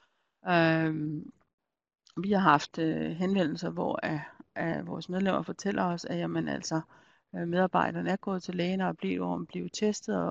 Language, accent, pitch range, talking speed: Danish, native, 165-200 Hz, 150 wpm